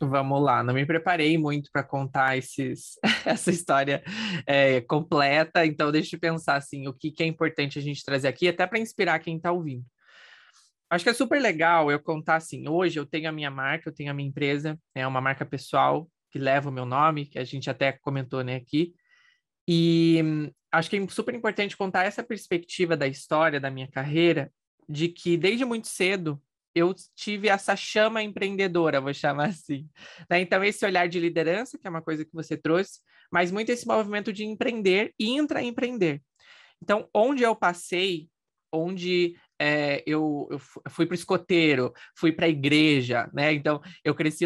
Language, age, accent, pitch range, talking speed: Portuguese, 20-39, Brazilian, 145-180 Hz, 175 wpm